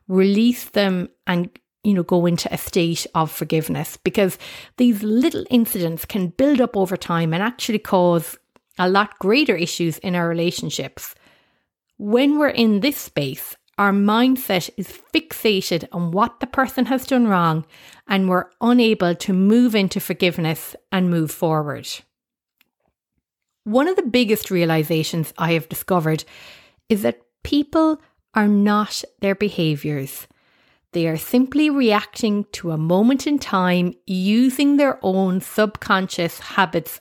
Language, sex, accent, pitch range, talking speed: English, female, Irish, 175-245 Hz, 140 wpm